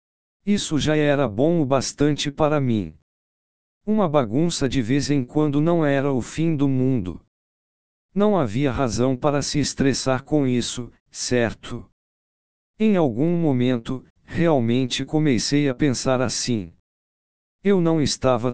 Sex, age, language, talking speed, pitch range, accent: male, 60-79, Portuguese, 130 wpm, 125-145 Hz, Brazilian